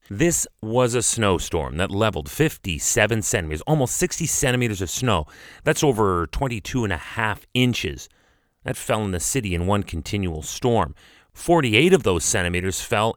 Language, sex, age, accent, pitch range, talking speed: English, male, 30-49, American, 90-125 Hz, 155 wpm